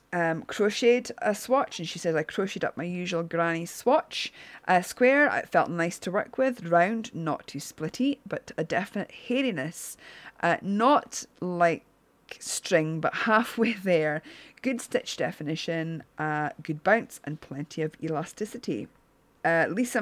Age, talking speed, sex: 30-49, 145 wpm, female